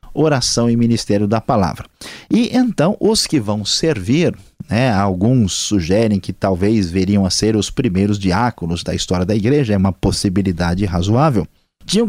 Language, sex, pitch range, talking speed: Portuguese, male, 105-155 Hz, 155 wpm